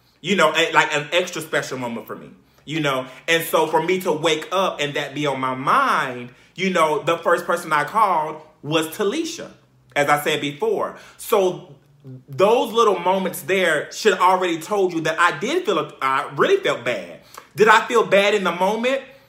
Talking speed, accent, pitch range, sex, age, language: 190 wpm, American, 155-200 Hz, male, 30-49, English